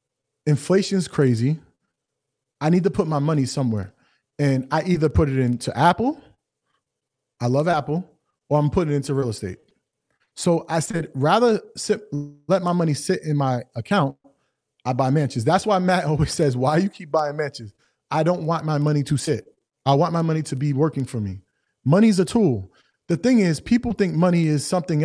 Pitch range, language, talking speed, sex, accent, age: 145-195 Hz, English, 190 wpm, male, American, 30-49